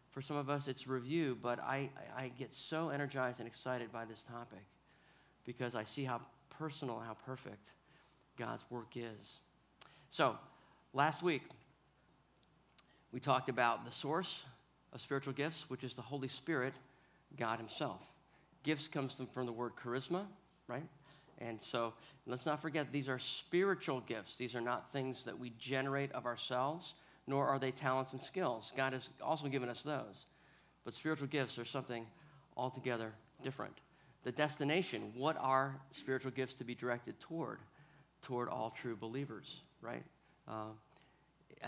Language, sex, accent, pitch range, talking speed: English, male, American, 120-145 Hz, 155 wpm